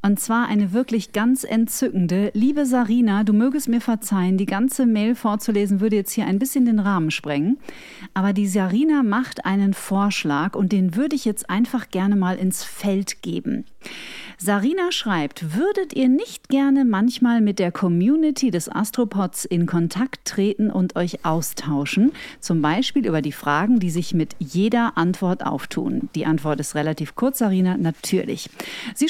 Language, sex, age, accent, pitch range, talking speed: German, female, 40-59, German, 180-245 Hz, 160 wpm